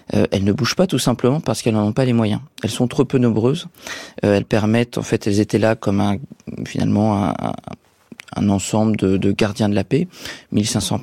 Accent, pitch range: French, 105-125 Hz